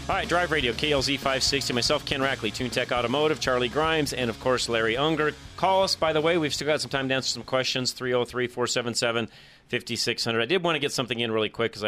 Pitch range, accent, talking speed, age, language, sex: 95-130 Hz, American, 220 wpm, 40-59, English, male